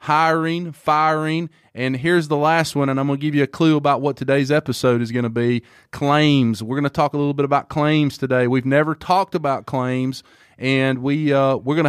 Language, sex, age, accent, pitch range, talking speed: English, male, 30-49, American, 135-180 Hz, 225 wpm